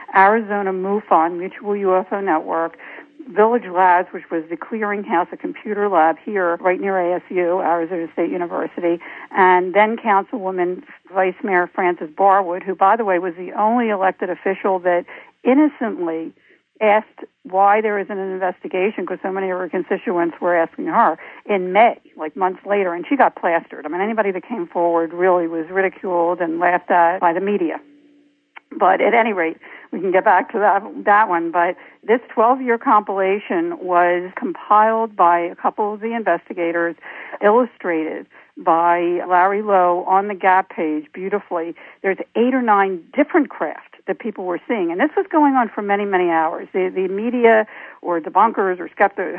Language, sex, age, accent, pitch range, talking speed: English, female, 60-79, American, 175-215 Hz, 165 wpm